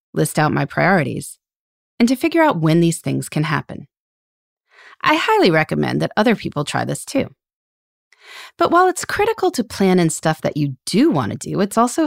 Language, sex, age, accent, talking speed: English, female, 30-49, American, 190 wpm